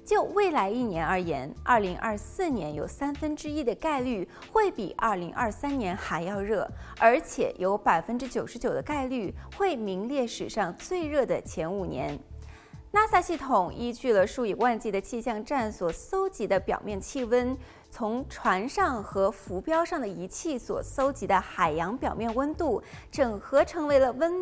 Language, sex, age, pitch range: Chinese, female, 20-39, 215-315 Hz